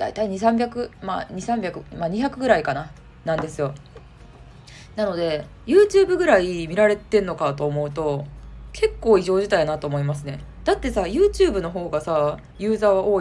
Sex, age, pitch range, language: female, 20-39, 160-260 Hz, Japanese